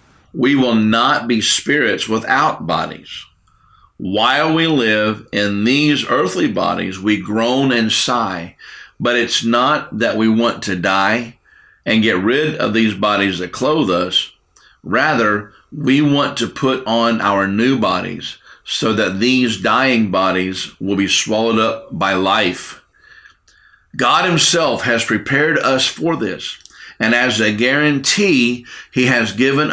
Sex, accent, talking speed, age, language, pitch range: male, American, 140 wpm, 50-69, English, 105-135 Hz